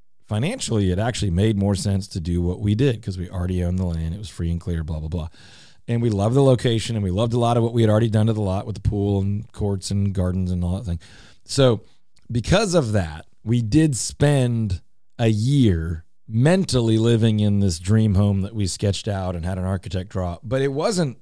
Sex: male